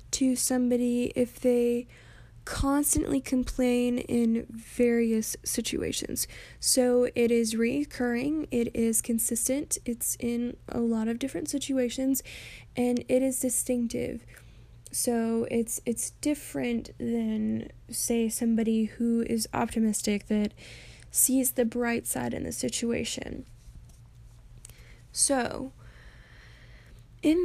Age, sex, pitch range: 10-29, female, 220-255 Hz